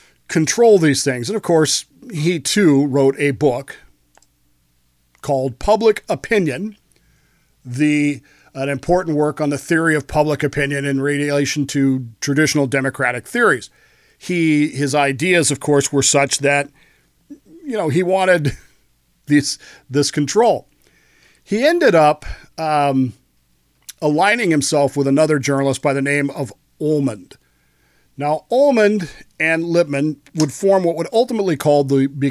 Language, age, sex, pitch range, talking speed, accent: English, 50-69, male, 140-185 Hz, 130 wpm, American